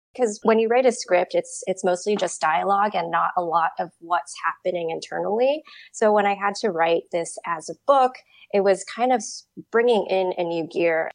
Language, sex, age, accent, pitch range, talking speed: English, female, 20-39, American, 165-240 Hz, 205 wpm